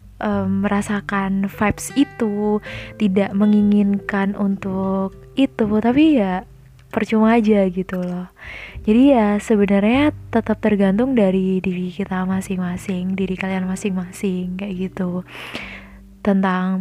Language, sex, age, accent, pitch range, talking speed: Indonesian, female, 20-39, native, 185-210 Hz, 100 wpm